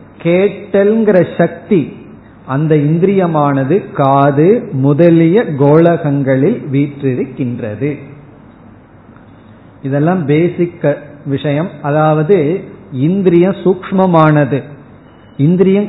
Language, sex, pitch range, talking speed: Tamil, male, 145-185 Hz, 55 wpm